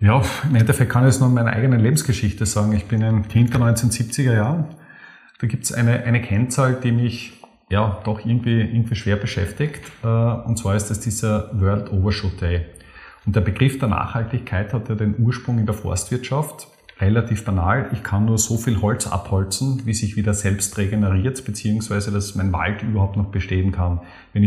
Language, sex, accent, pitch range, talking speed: German, male, Austrian, 100-120 Hz, 185 wpm